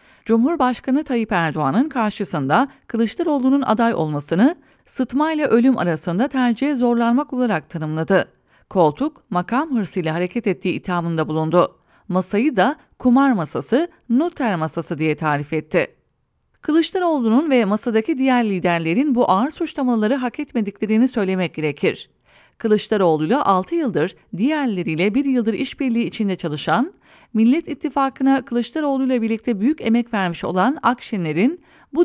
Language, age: English, 30-49